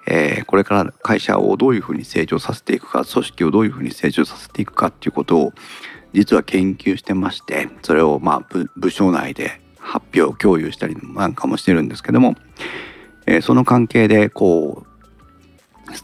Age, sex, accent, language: 40-59, male, native, Japanese